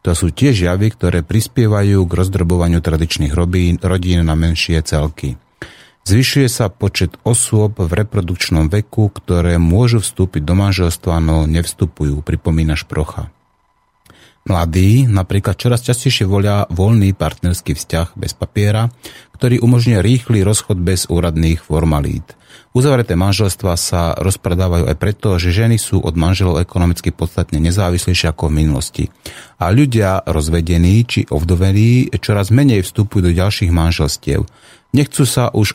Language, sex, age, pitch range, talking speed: Slovak, male, 30-49, 85-105 Hz, 130 wpm